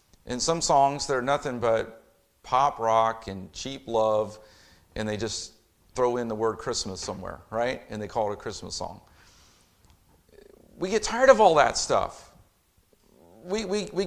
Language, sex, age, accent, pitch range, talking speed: English, male, 40-59, American, 110-150 Hz, 160 wpm